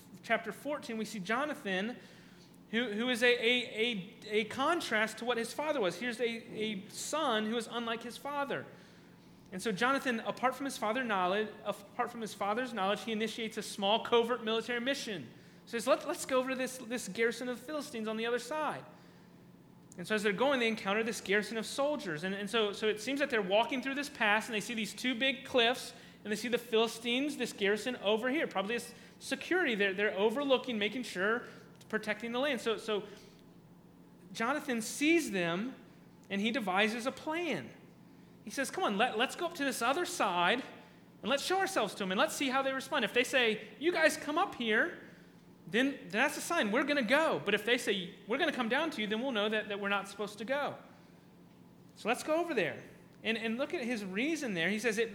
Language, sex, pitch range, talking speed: English, male, 215-270 Hz, 215 wpm